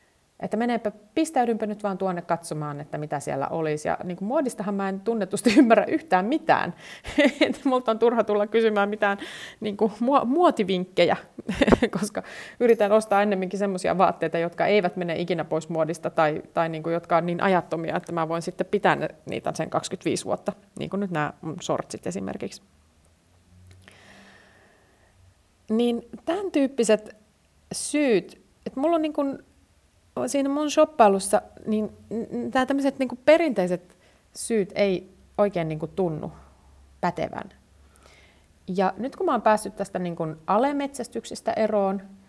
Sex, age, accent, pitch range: female, 30-49, native, 160-220 Hz